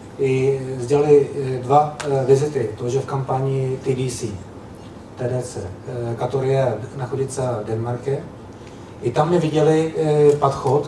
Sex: male